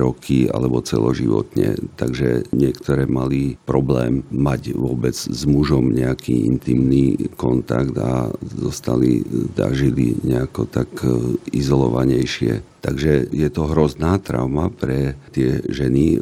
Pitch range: 65-80 Hz